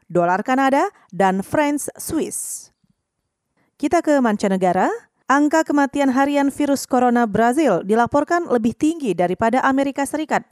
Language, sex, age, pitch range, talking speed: Indonesian, female, 30-49, 215-275 Hz, 110 wpm